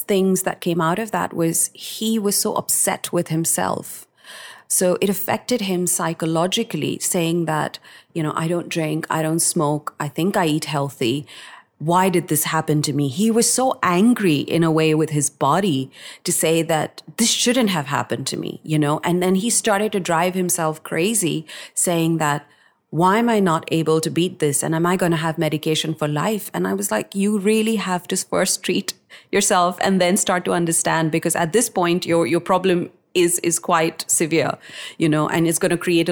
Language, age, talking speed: English, 30-49, 200 wpm